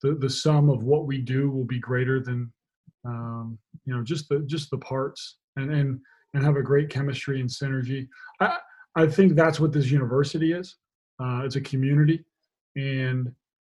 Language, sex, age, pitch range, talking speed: English, male, 30-49, 125-150 Hz, 180 wpm